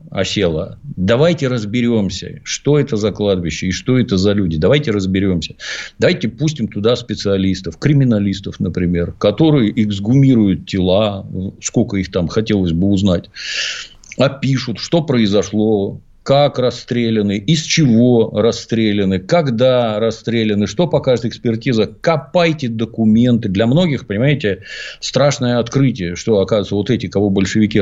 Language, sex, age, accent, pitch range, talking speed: Russian, male, 50-69, native, 100-130 Hz, 120 wpm